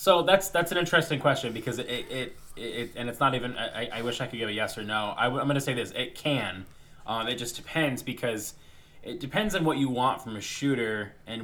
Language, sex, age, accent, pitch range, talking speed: English, male, 20-39, American, 105-125 Hz, 255 wpm